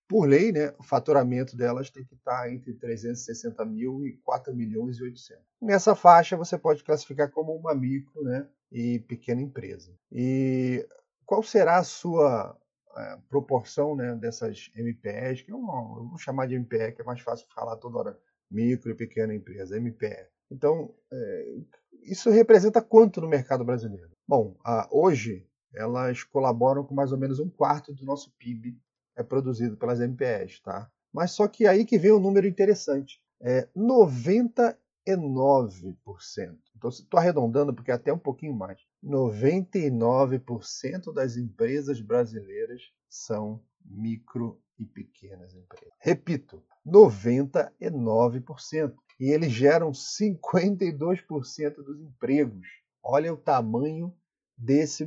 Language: Portuguese